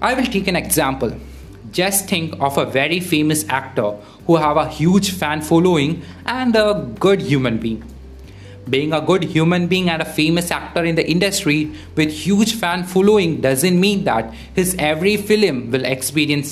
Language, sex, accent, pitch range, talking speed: English, male, Indian, 130-175 Hz, 170 wpm